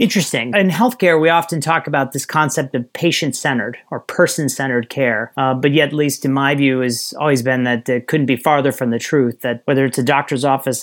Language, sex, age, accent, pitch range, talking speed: English, male, 30-49, American, 130-155 Hz, 215 wpm